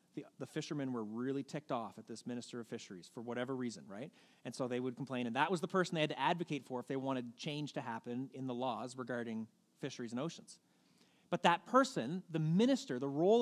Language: English